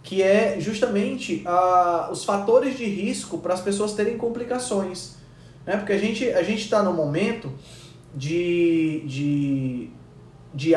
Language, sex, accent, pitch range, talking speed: Portuguese, male, Brazilian, 150-205 Hz, 140 wpm